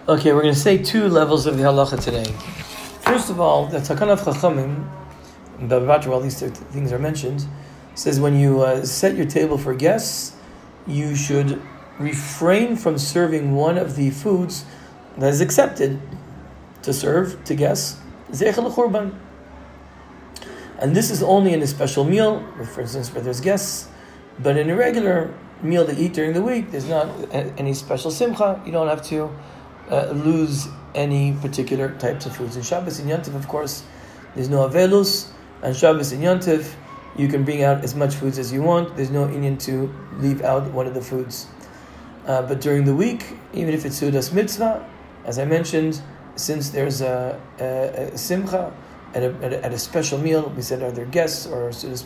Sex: male